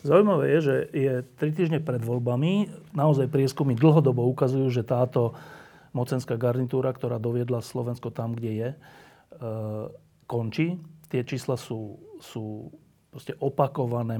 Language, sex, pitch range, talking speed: Slovak, male, 125-155 Hz, 125 wpm